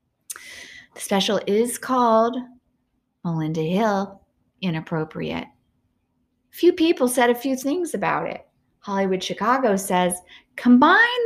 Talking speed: 100 wpm